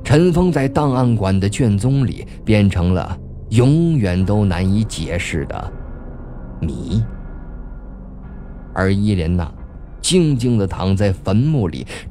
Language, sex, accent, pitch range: Chinese, male, native, 90-130 Hz